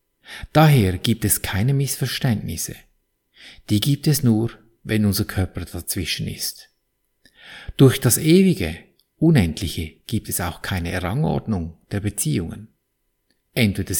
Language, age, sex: German, 50-69, male